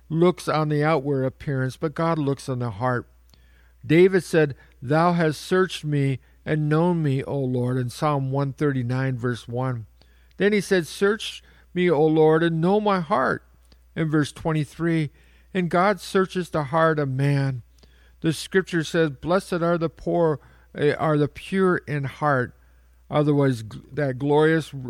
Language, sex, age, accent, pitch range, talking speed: English, male, 50-69, American, 120-170 Hz, 150 wpm